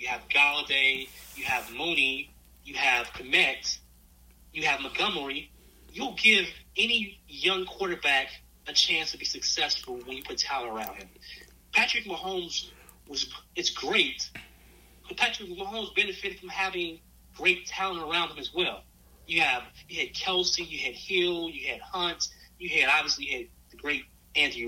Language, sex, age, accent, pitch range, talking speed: English, male, 30-49, American, 120-190 Hz, 150 wpm